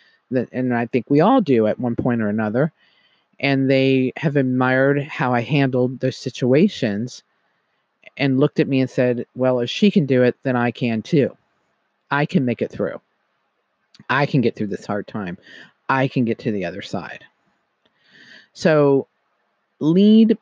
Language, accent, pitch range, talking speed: English, American, 125-155 Hz, 170 wpm